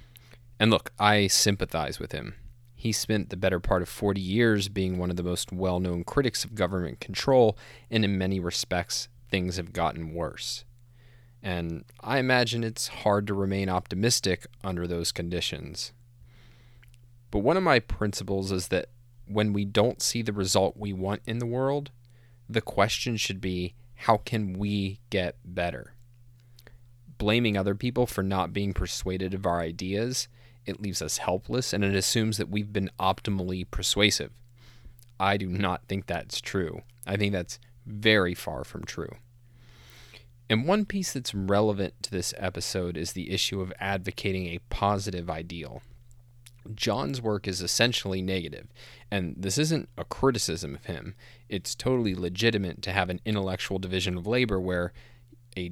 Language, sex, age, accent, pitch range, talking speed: English, male, 20-39, American, 90-120 Hz, 155 wpm